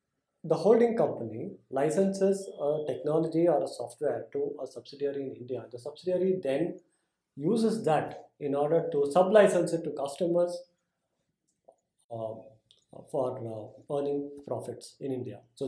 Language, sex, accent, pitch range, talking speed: English, male, Indian, 130-180 Hz, 130 wpm